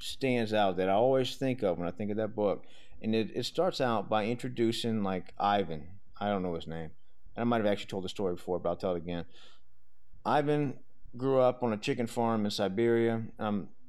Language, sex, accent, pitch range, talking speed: English, male, American, 95-120 Hz, 220 wpm